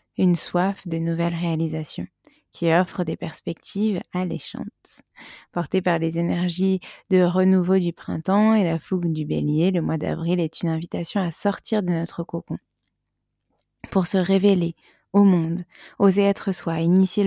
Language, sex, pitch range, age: French, female, 170-190 Hz, 20-39